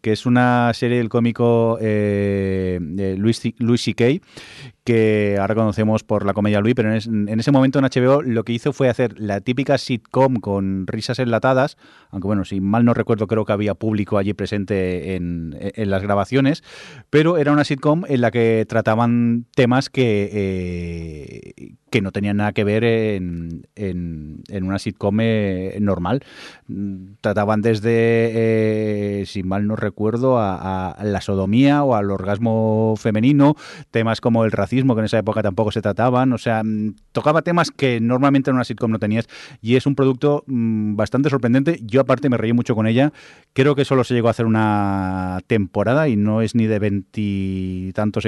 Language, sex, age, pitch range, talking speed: Spanish, male, 30-49, 100-120 Hz, 175 wpm